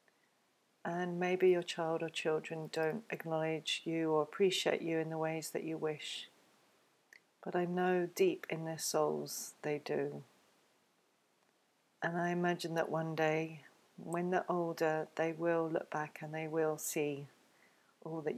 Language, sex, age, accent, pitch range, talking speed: English, female, 40-59, British, 155-170 Hz, 150 wpm